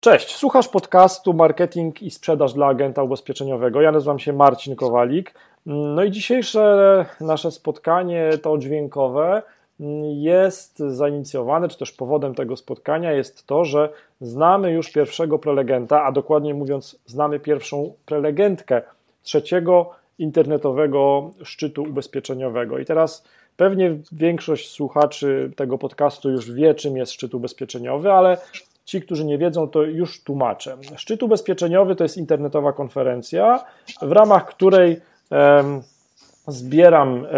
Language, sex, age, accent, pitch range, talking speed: Polish, male, 40-59, native, 140-170 Hz, 120 wpm